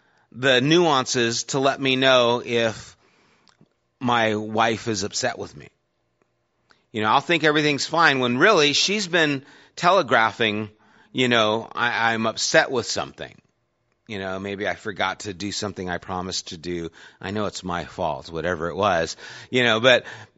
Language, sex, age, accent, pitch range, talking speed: English, male, 30-49, American, 110-150 Hz, 155 wpm